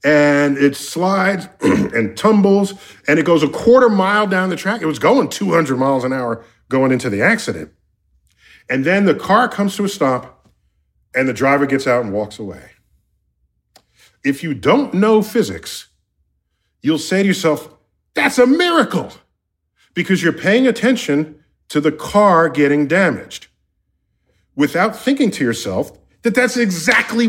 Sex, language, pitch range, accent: male, English, 140-225 Hz, American